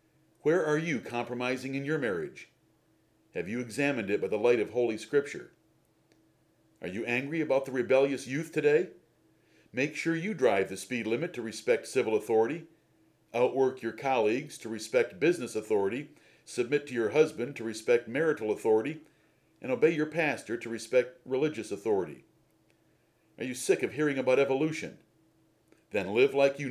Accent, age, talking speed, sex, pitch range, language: American, 50-69, 155 wpm, male, 115-160 Hz, English